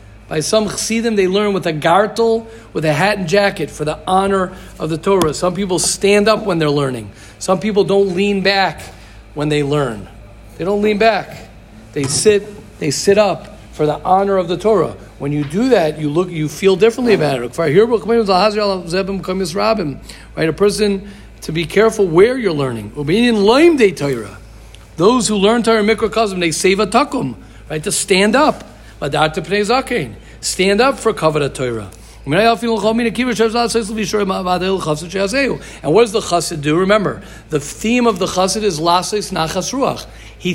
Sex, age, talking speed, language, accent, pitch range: male, 50-69, 145 wpm, English, American, 150-215 Hz